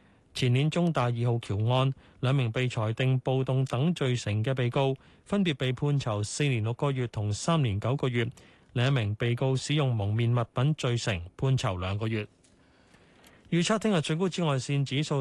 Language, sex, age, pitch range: Chinese, male, 20-39, 120-155 Hz